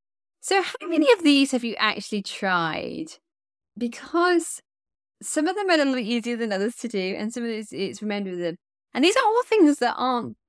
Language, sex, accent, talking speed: English, female, British, 210 wpm